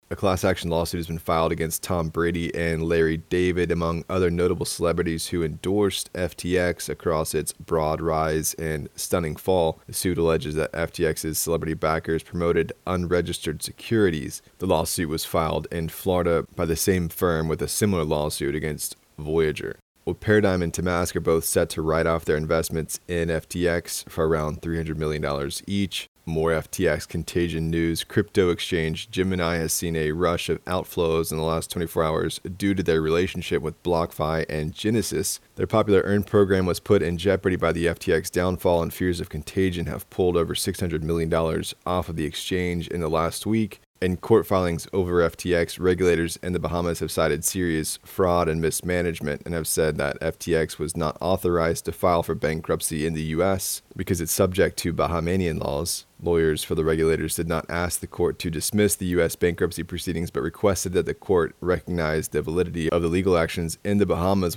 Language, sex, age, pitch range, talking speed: English, male, 20-39, 80-90 Hz, 180 wpm